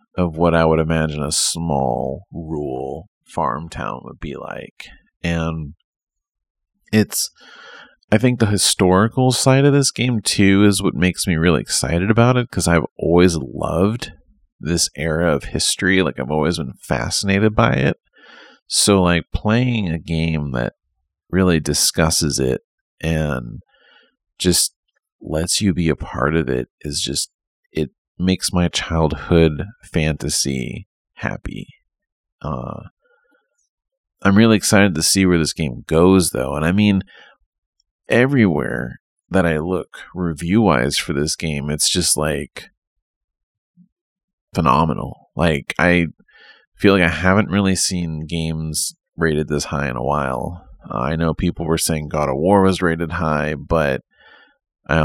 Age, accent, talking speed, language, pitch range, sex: 30-49, American, 140 wpm, English, 75-95 Hz, male